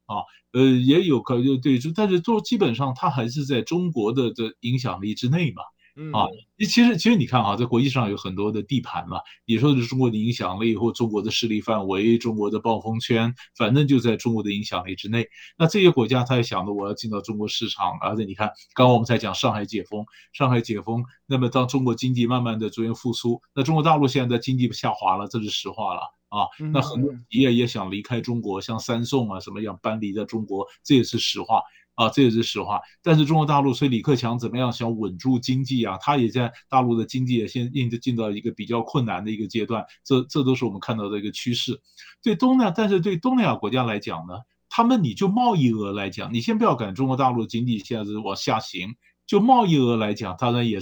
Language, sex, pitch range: Chinese, male, 110-140 Hz